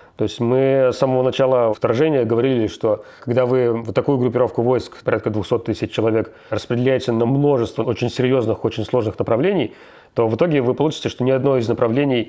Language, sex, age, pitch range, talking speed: Russian, male, 30-49, 110-130 Hz, 180 wpm